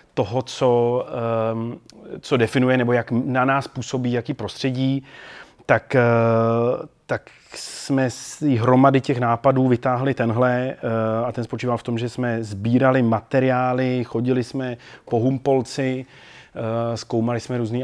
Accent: native